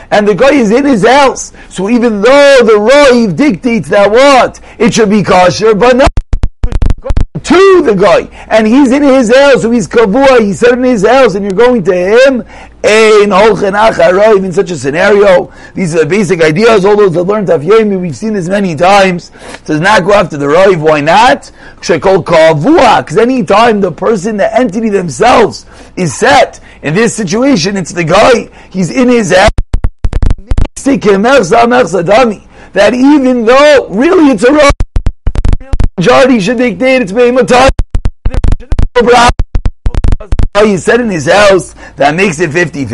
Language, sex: English, male